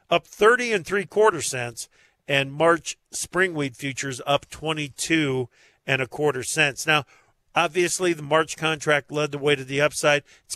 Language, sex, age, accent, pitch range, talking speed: English, male, 50-69, American, 135-160 Hz, 170 wpm